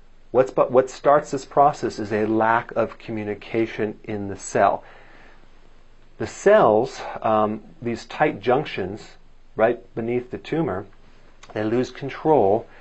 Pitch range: 105-130 Hz